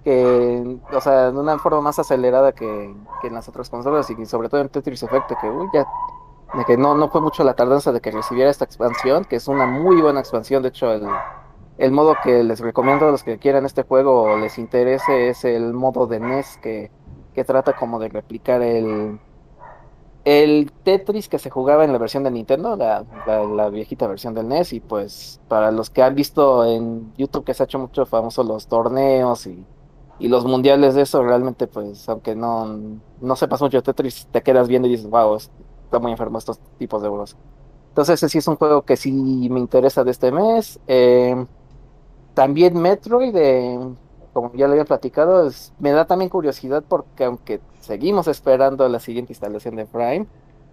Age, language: 30-49, Spanish